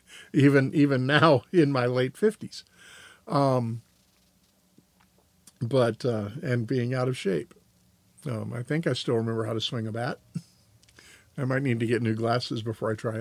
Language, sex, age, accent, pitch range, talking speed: English, male, 50-69, American, 110-160 Hz, 165 wpm